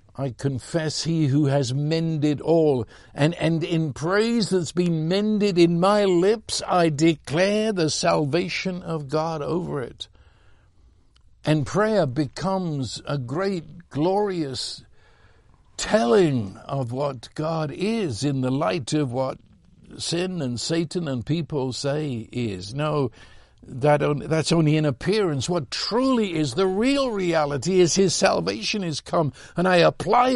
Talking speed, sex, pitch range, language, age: 135 wpm, male, 130-180 Hz, English, 60-79